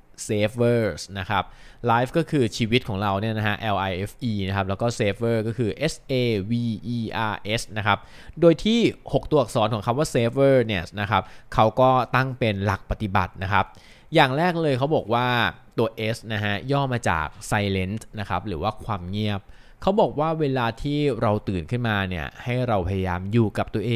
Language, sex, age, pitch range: Thai, male, 20-39, 105-130 Hz